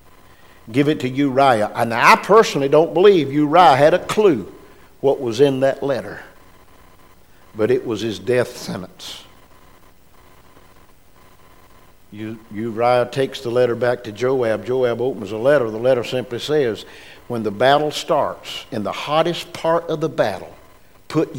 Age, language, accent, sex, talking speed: 50-69, English, American, male, 145 wpm